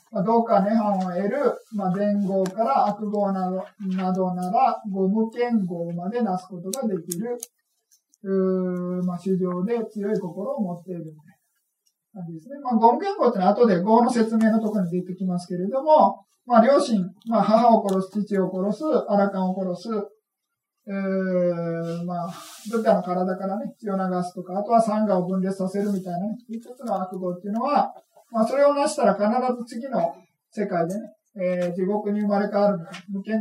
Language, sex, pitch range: Japanese, male, 185-225 Hz